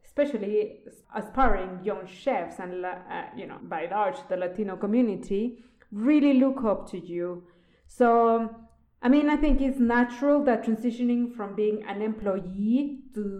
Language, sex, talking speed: English, female, 145 wpm